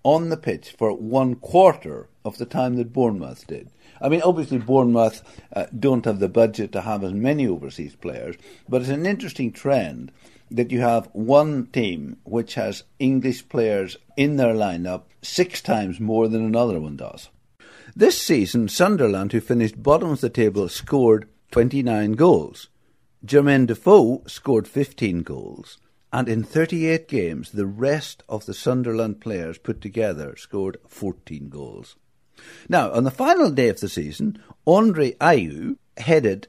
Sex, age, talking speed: male, 60-79, 155 wpm